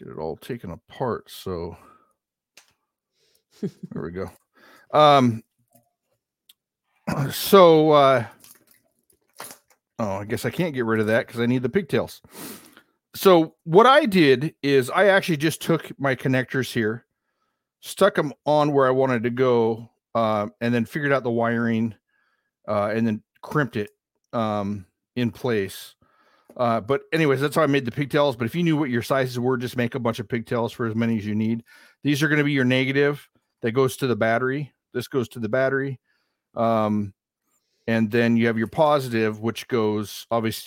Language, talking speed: English, 175 wpm